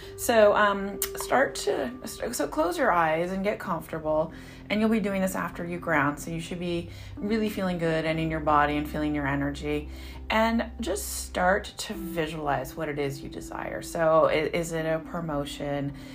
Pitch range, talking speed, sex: 140-185 Hz, 180 wpm, female